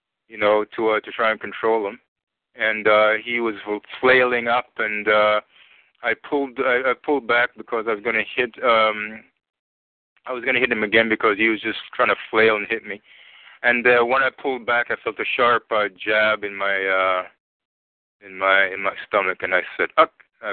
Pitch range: 105-120 Hz